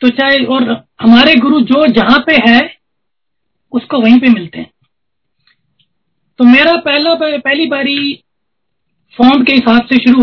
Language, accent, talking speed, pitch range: Hindi, native, 140 wpm, 230-270 Hz